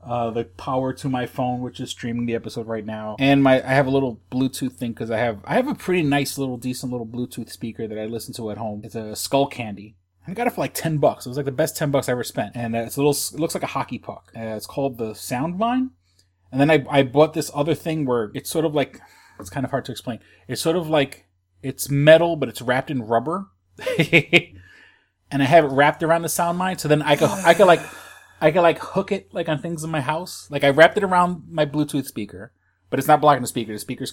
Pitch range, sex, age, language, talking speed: 115-145 Hz, male, 30-49, English, 265 wpm